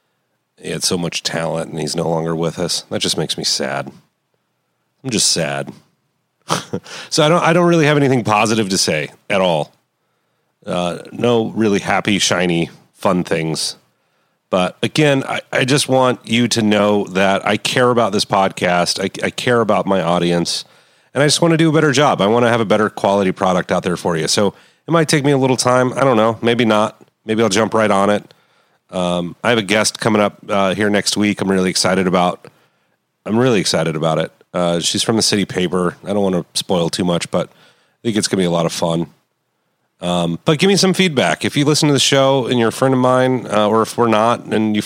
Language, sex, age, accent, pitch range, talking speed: English, male, 30-49, American, 90-125 Hz, 225 wpm